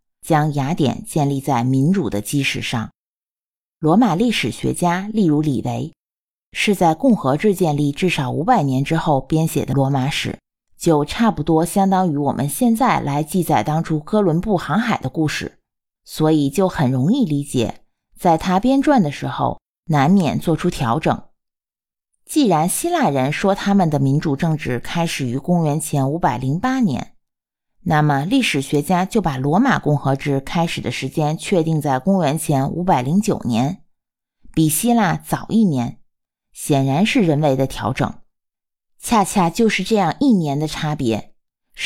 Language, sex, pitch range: Chinese, female, 140-190 Hz